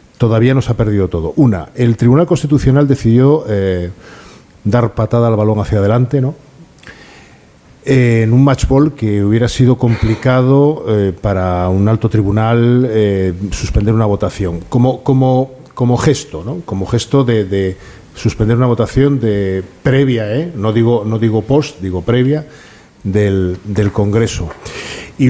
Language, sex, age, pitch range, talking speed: Spanish, male, 50-69, 105-130 Hz, 145 wpm